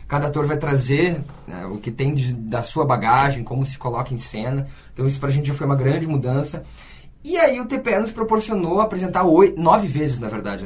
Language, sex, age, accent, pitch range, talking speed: Portuguese, male, 20-39, Brazilian, 130-180 Hz, 215 wpm